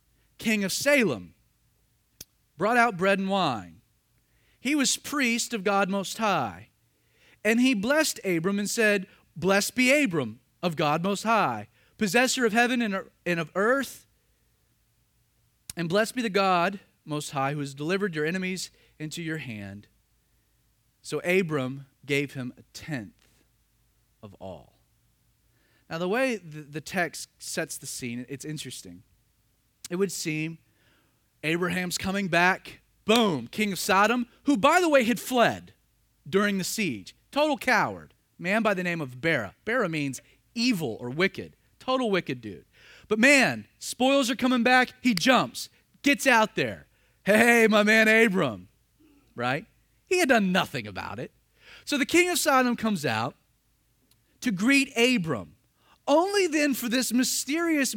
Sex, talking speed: male, 145 wpm